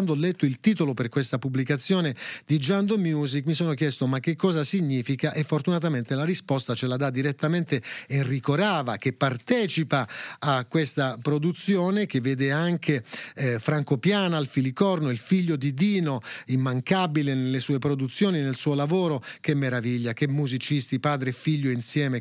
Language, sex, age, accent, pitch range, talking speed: Italian, male, 40-59, native, 135-180 Hz, 160 wpm